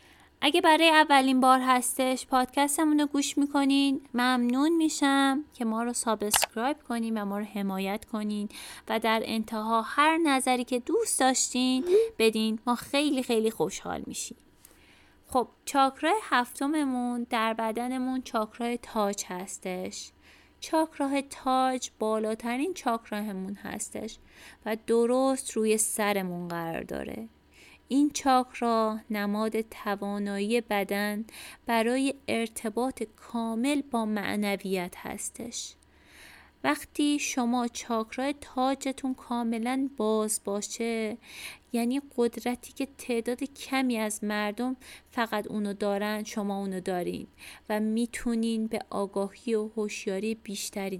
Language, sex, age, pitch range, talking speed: Persian, female, 20-39, 215-265 Hz, 110 wpm